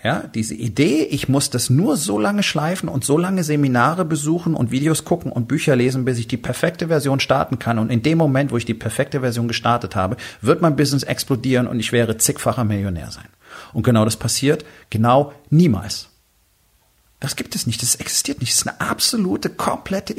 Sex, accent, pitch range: male, German, 115-150 Hz